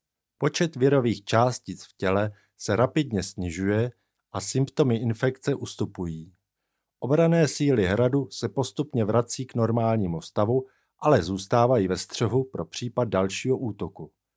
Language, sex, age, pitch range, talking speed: Czech, male, 50-69, 95-130 Hz, 120 wpm